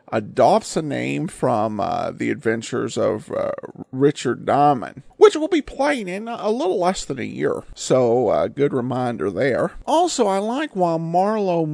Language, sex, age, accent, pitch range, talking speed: English, male, 50-69, American, 135-195 Hz, 165 wpm